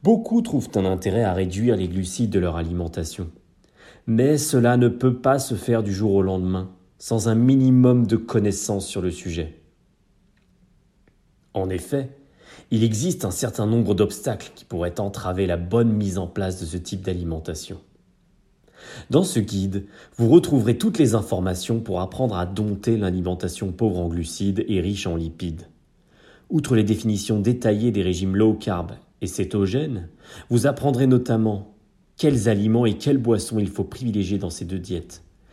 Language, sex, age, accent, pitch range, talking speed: French, male, 30-49, French, 95-120 Hz, 160 wpm